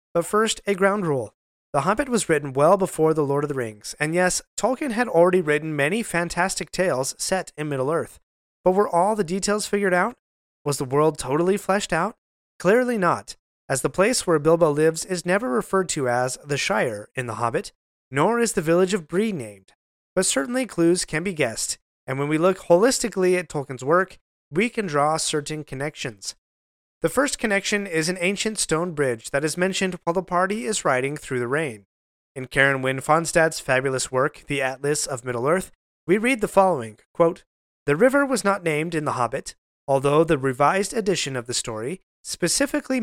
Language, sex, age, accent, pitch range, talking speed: English, male, 30-49, American, 140-195 Hz, 190 wpm